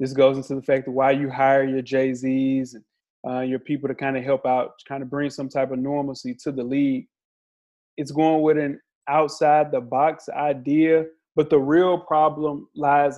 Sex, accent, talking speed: male, American, 185 wpm